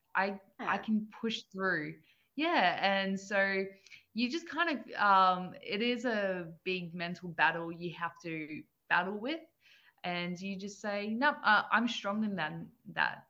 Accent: Australian